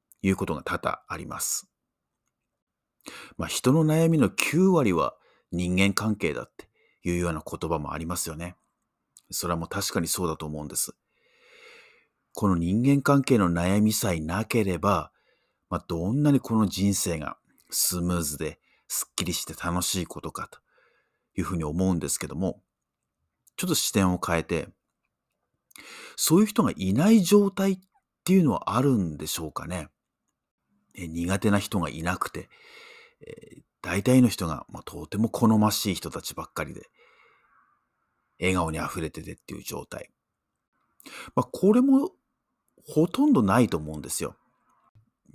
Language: Japanese